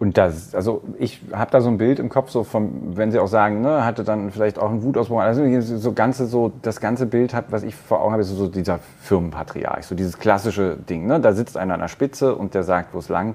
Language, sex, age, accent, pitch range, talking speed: German, male, 30-49, German, 100-125 Hz, 260 wpm